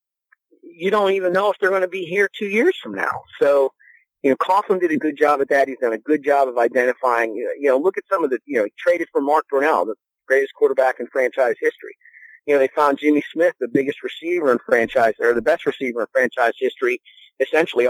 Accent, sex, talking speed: American, male, 235 wpm